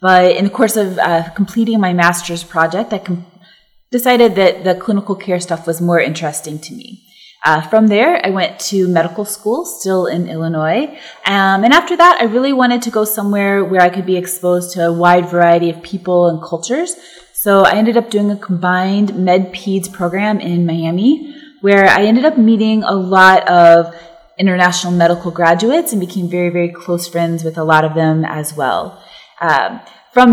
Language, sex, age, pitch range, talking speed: English, female, 20-39, 170-215 Hz, 185 wpm